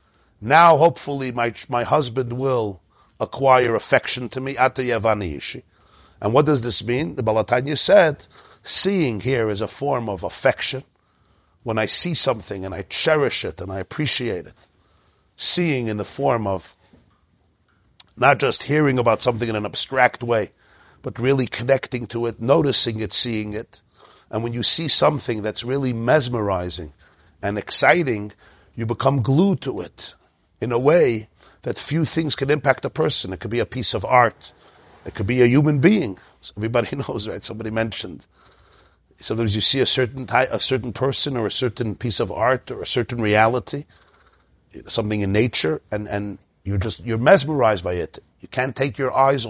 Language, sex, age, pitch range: English, male, 50-69, 100-130 Hz